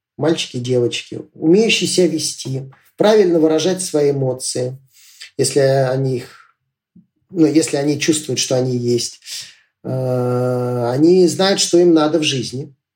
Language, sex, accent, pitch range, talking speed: Russian, male, native, 125-175 Hz, 125 wpm